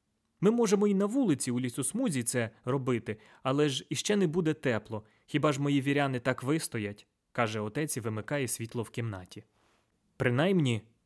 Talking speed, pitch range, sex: 165 wpm, 115-145 Hz, male